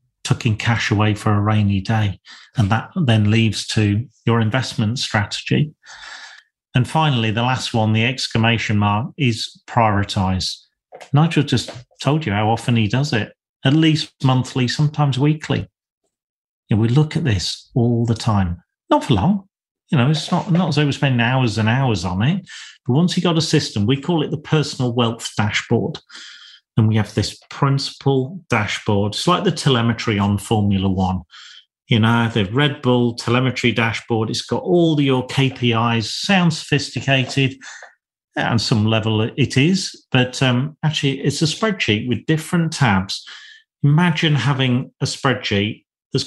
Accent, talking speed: British, 160 wpm